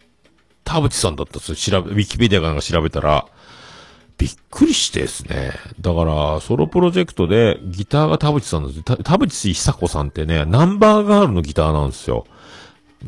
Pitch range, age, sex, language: 80-130 Hz, 50-69, male, Japanese